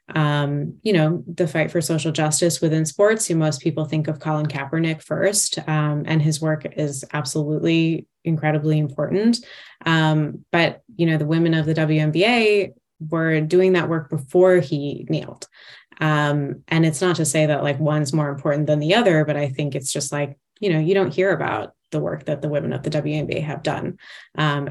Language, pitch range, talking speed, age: English, 145-165 Hz, 195 wpm, 20-39